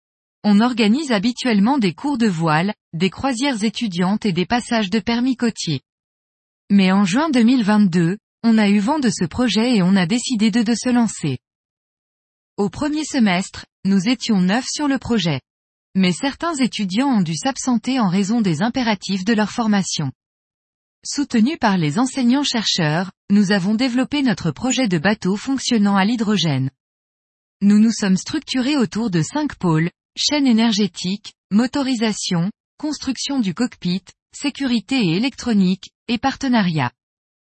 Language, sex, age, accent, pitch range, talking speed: French, female, 20-39, French, 185-250 Hz, 145 wpm